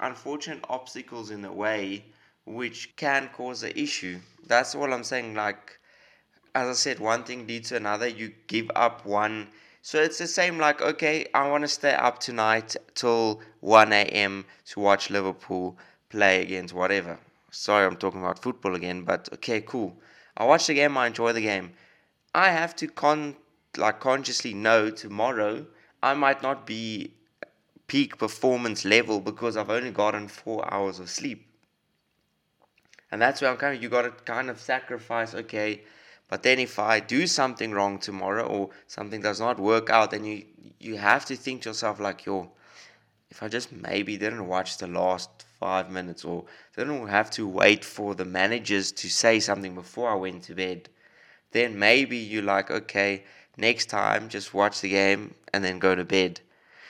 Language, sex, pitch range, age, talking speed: English, male, 100-125 Hz, 20-39, 180 wpm